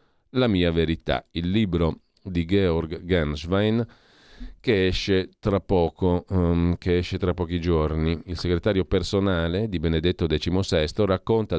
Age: 40-59